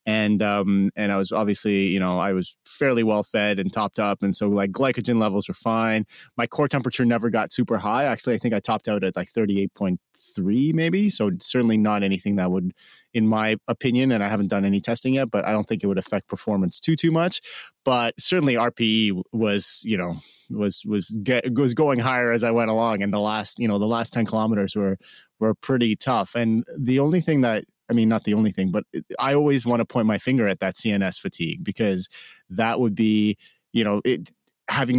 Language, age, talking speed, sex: English, 30-49, 215 wpm, male